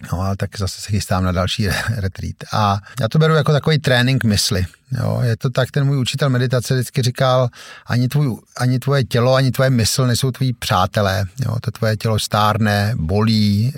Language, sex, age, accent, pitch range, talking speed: Czech, male, 50-69, native, 110-130 Hz, 195 wpm